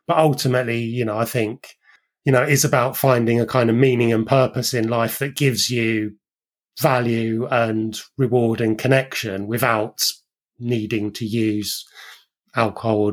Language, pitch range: English, 110-125 Hz